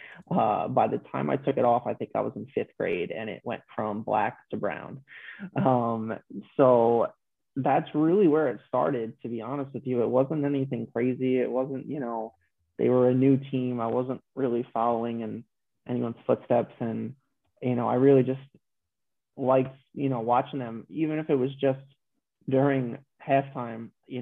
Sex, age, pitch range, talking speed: male, 20-39, 115-135 Hz, 180 wpm